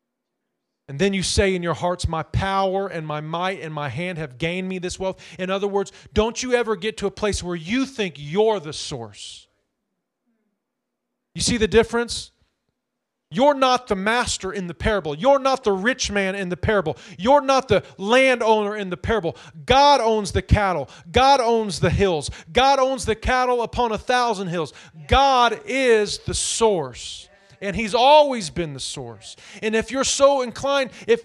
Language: English